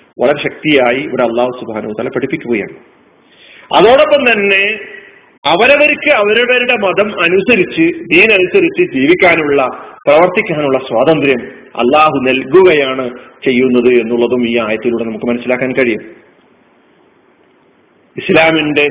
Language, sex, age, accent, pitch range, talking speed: Malayalam, male, 40-59, native, 150-230 Hz, 85 wpm